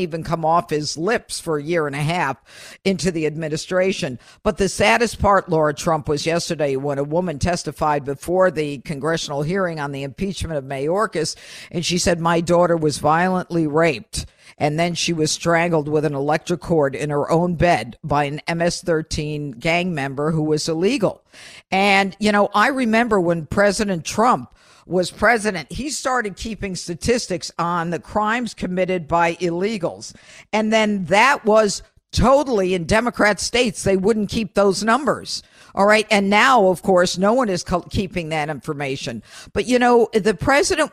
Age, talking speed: 50-69, 165 wpm